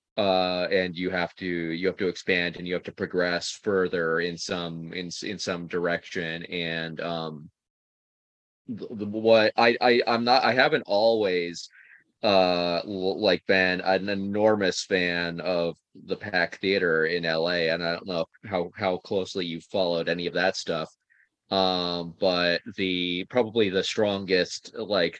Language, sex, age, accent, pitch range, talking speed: English, male, 20-39, American, 85-95 Hz, 155 wpm